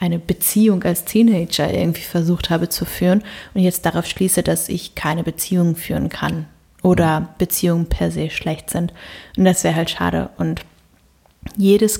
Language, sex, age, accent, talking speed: German, female, 30-49, German, 160 wpm